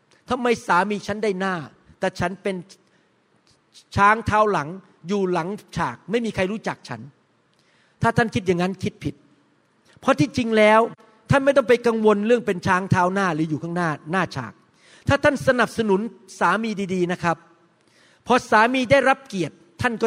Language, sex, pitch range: Thai, male, 170-225 Hz